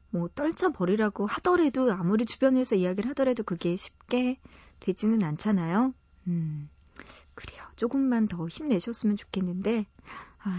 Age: 40-59